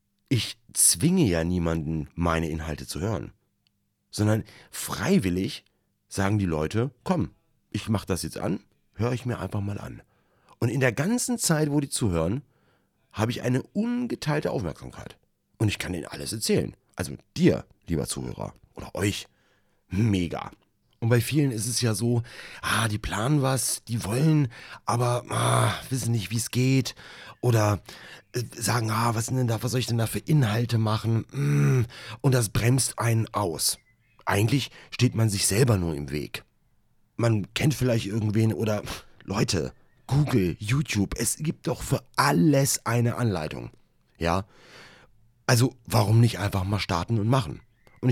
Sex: male